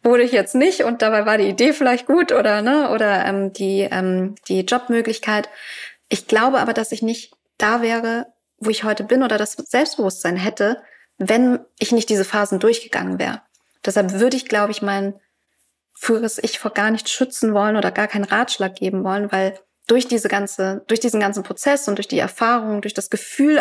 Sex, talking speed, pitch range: female, 195 wpm, 190-230 Hz